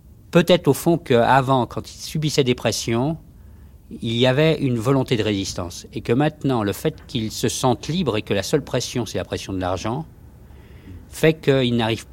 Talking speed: 190 wpm